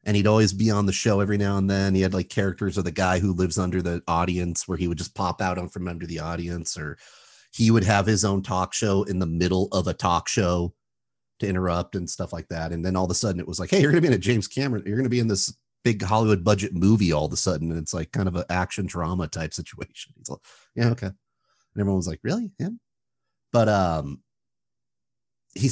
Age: 30-49